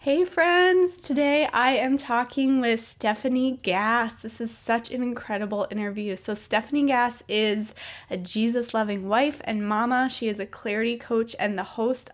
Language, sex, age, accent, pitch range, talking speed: English, female, 20-39, American, 200-250 Hz, 160 wpm